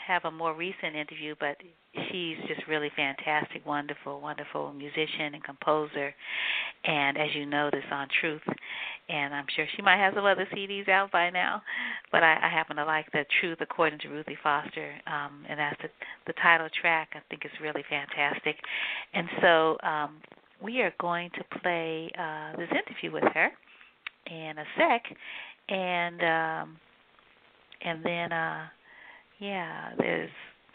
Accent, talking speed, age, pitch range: American, 160 wpm, 50-69, 155-180 Hz